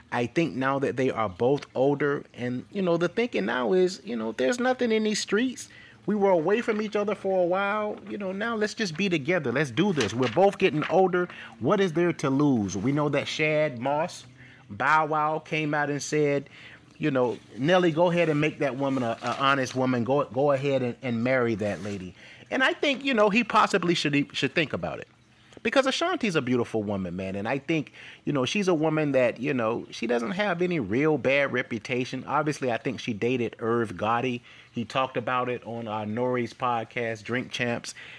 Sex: male